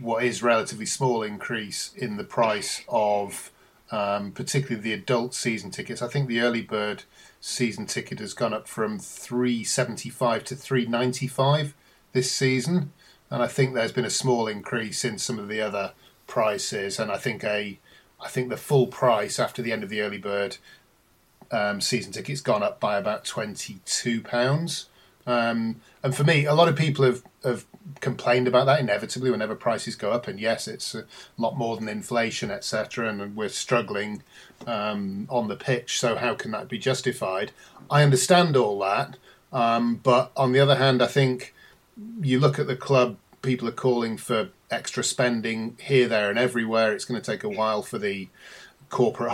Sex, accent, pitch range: male, British, 110-130 Hz